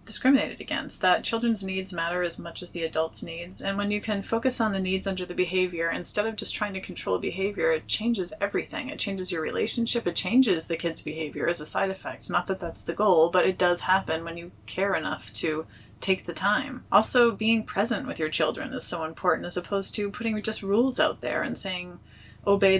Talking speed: 220 wpm